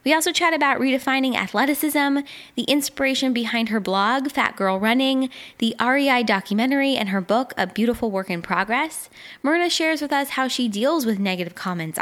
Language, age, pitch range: English, 10-29, 205-260 Hz